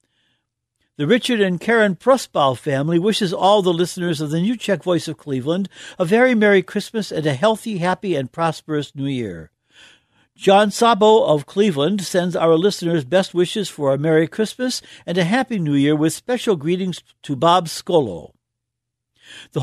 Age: 60-79